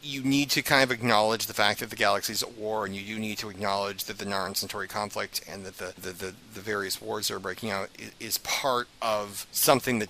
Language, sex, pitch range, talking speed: English, male, 105-125 Hz, 250 wpm